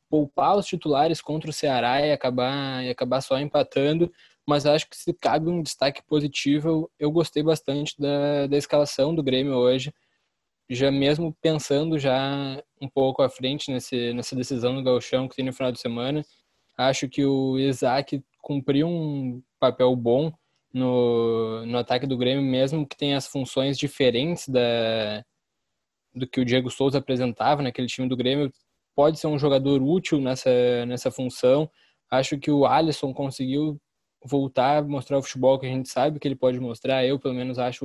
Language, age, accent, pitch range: Portuguese, 10-29, Brazilian, 130-150 Hz